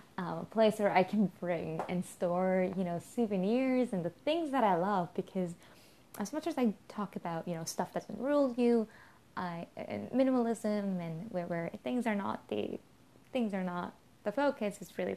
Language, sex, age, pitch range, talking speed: English, female, 20-39, 180-240 Hz, 200 wpm